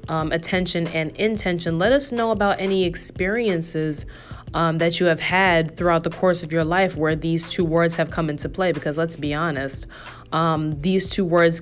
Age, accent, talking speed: 20-39, American, 190 wpm